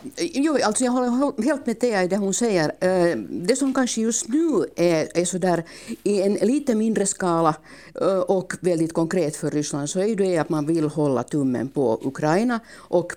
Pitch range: 155-200 Hz